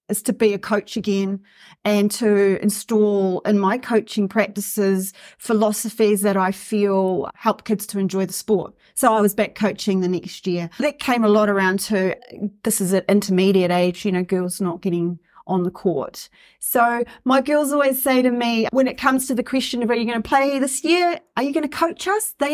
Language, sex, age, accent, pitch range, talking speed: English, female, 40-59, Australian, 205-270 Hz, 210 wpm